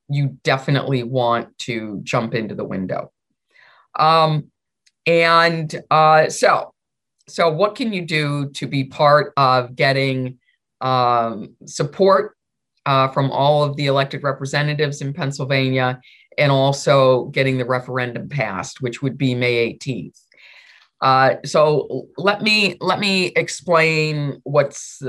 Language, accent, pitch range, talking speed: English, American, 130-155 Hz, 125 wpm